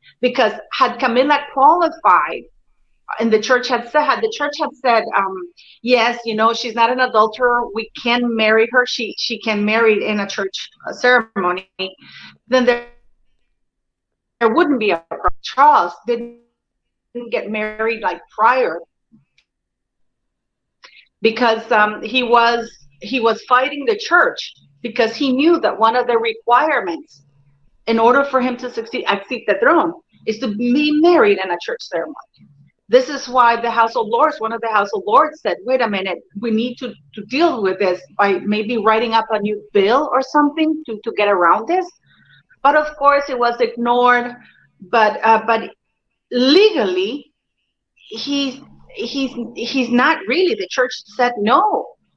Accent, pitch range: American, 220-265 Hz